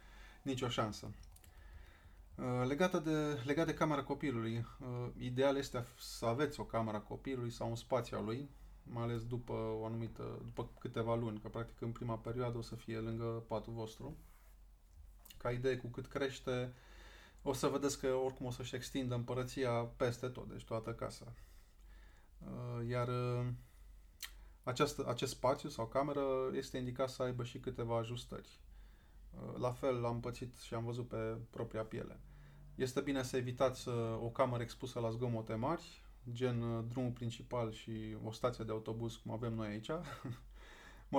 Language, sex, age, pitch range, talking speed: Romanian, male, 20-39, 115-130 Hz, 150 wpm